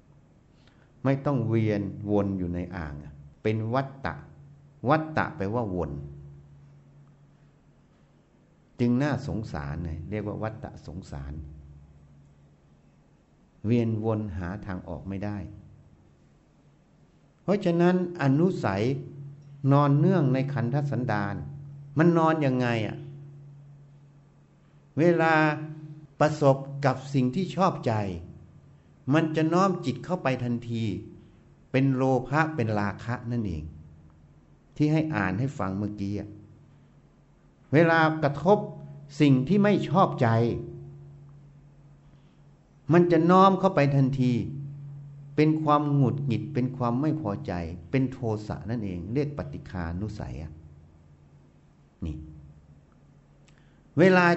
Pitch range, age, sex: 100-145 Hz, 60-79, male